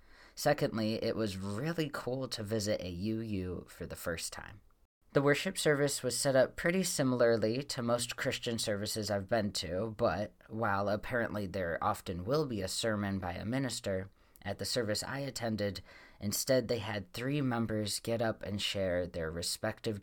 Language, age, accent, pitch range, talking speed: English, 20-39, American, 95-120 Hz, 170 wpm